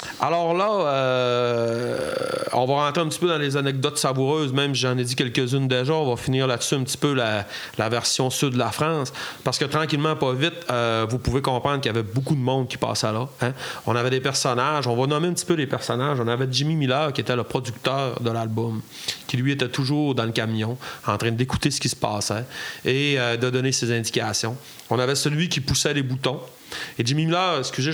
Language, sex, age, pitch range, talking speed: French, male, 30-49, 120-145 Hz, 225 wpm